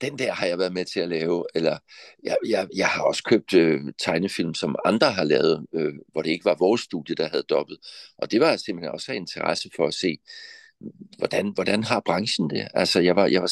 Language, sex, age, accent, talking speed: Danish, male, 60-79, native, 230 wpm